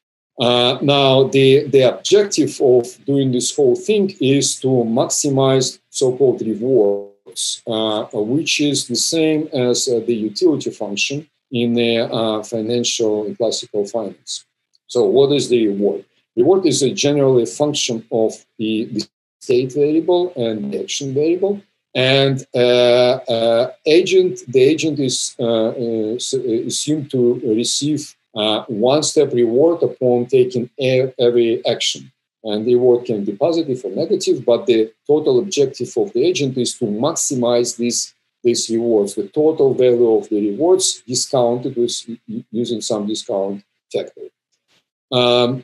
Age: 50-69